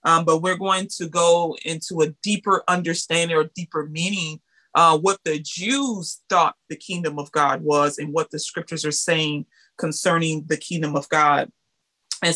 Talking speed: 170 wpm